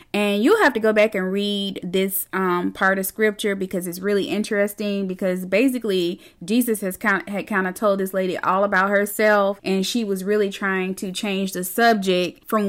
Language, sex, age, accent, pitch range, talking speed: English, female, 20-39, American, 190-245 Hz, 185 wpm